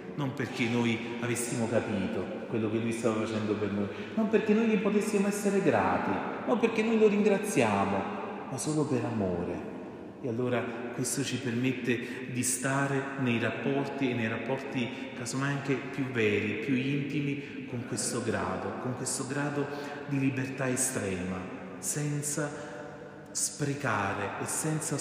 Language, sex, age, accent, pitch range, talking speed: Italian, male, 30-49, native, 120-165 Hz, 140 wpm